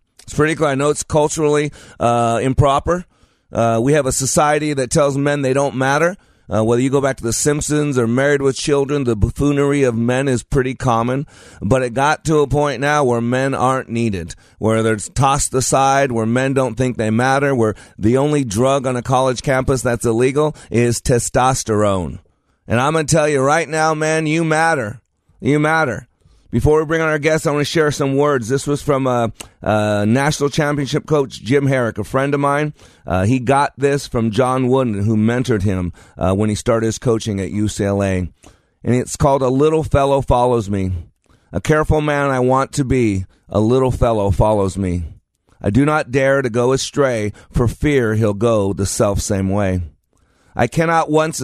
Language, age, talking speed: English, 30-49, 195 wpm